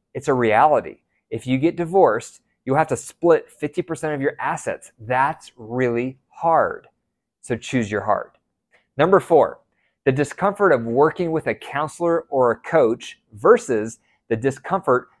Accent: American